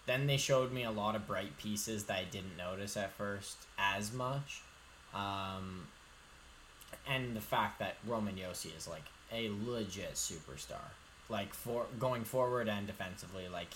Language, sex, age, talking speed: English, male, 10-29, 155 wpm